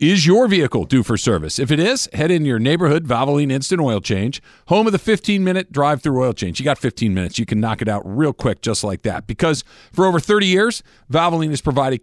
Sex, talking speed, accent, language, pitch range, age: male, 240 wpm, American, English, 115-160 Hz, 50-69